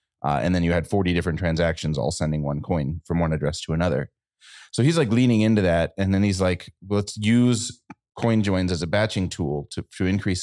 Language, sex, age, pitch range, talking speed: English, male, 30-49, 85-105 Hz, 225 wpm